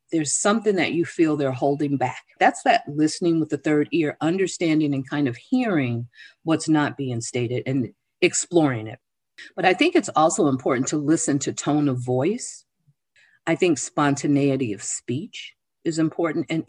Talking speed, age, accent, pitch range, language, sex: 170 wpm, 50-69, American, 130-165 Hz, English, female